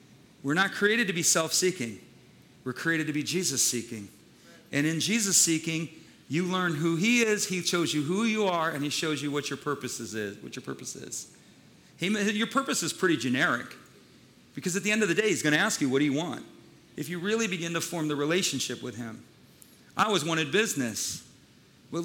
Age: 40-59